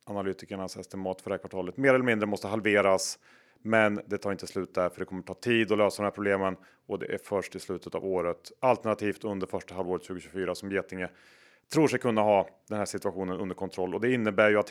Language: Swedish